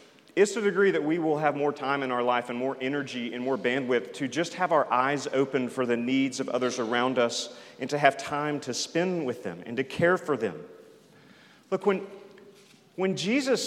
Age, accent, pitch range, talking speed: 40-59, American, 145-195 Hz, 215 wpm